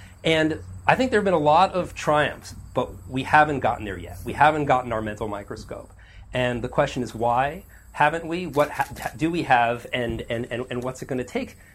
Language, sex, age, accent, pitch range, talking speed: English, male, 40-59, American, 115-150 Hz, 220 wpm